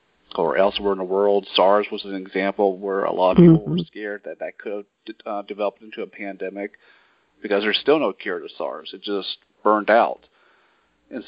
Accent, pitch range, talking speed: American, 100-115 Hz, 200 wpm